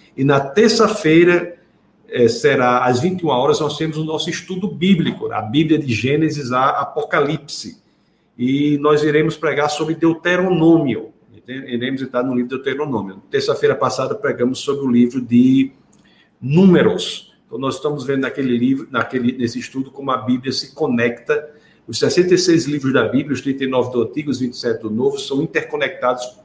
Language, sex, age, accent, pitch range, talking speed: Portuguese, male, 50-69, Brazilian, 125-155 Hz, 150 wpm